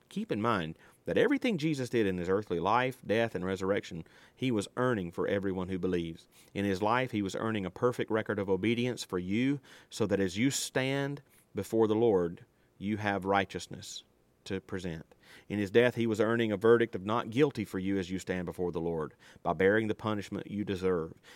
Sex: male